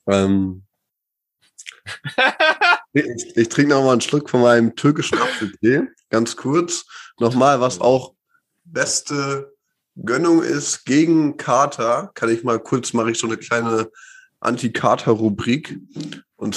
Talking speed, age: 120 wpm, 20-39